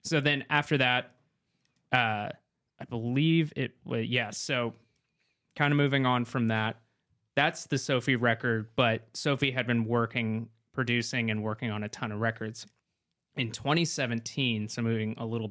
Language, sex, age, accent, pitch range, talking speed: English, male, 20-39, American, 110-130 Hz, 155 wpm